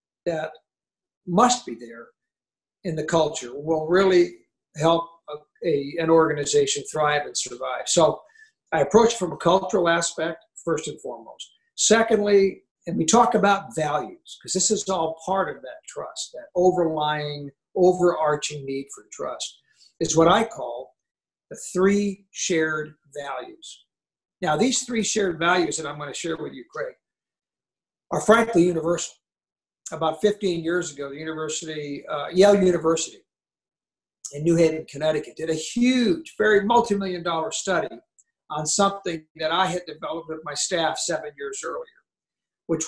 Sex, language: male, English